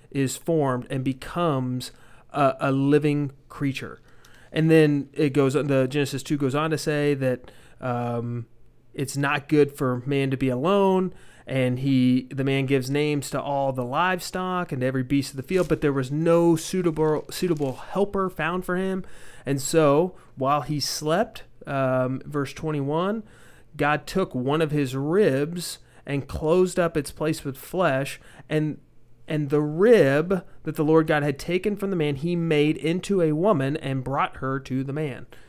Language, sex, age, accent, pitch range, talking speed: English, male, 30-49, American, 130-155 Hz, 170 wpm